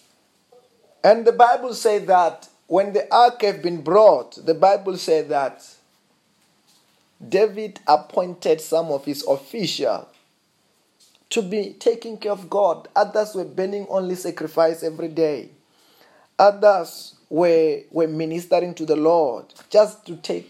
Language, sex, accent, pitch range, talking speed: English, male, South African, 160-210 Hz, 130 wpm